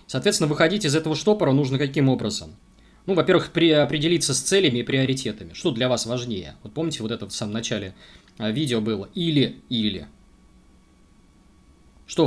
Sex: male